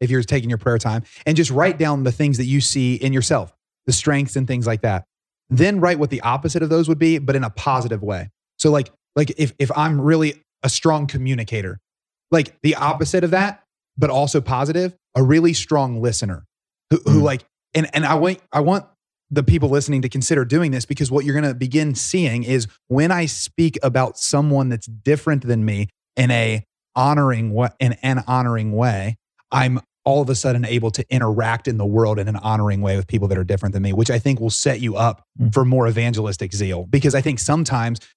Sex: male